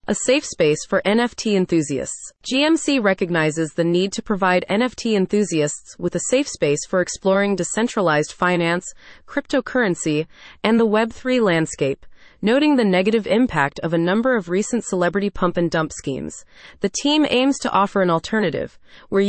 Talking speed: 150 wpm